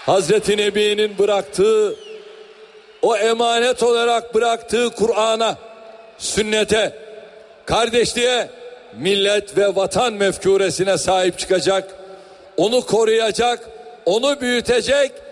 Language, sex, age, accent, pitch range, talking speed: Turkish, male, 60-79, native, 205-290 Hz, 80 wpm